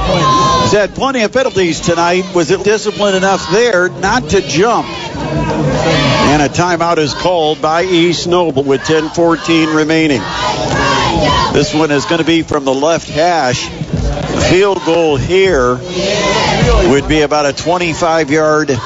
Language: English